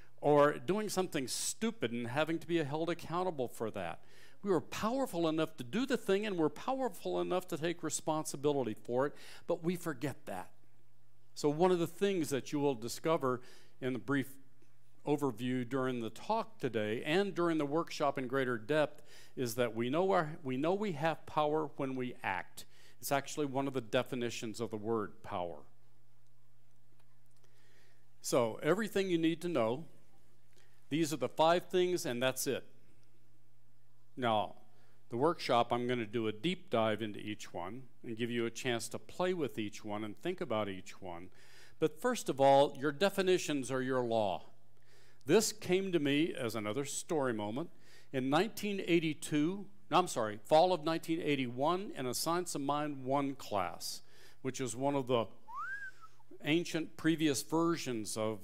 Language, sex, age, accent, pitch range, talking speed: English, male, 50-69, American, 115-165 Hz, 165 wpm